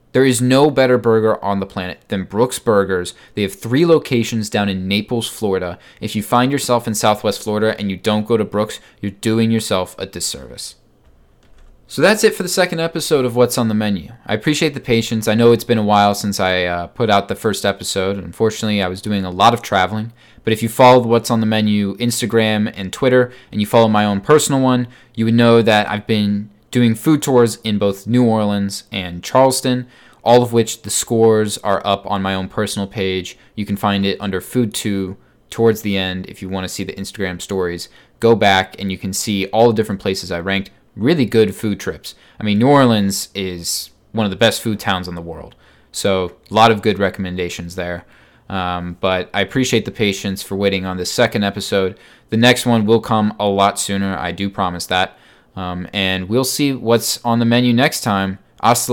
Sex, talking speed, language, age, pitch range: male, 215 wpm, English, 20-39, 95-115 Hz